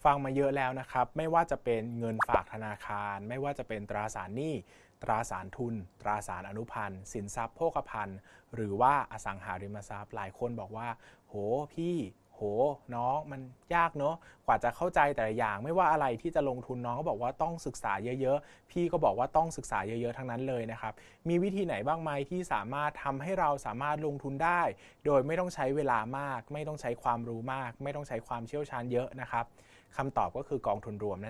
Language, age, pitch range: Thai, 20-39, 110-145 Hz